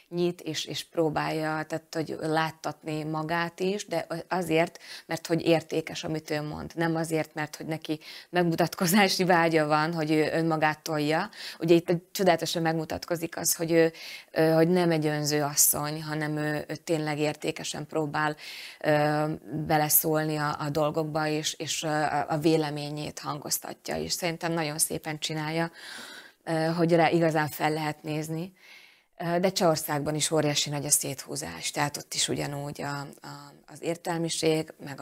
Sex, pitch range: female, 150-165 Hz